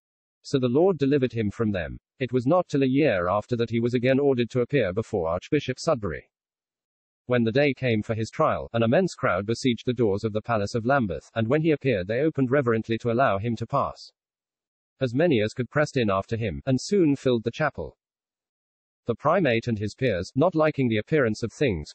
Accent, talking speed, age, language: British, 215 wpm, 40-59, English